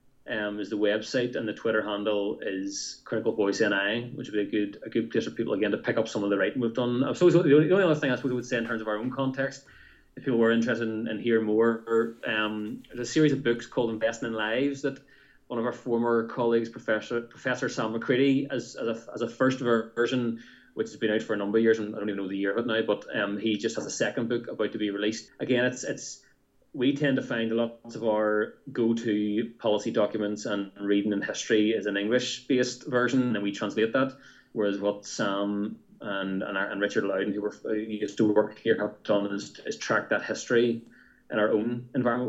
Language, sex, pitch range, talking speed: English, male, 105-120 Hz, 245 wpm